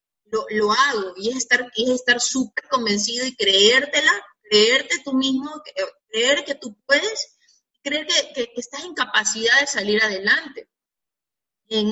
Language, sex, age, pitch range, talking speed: Spanish, female, 30-49, 215-265 Hz, 150 wpm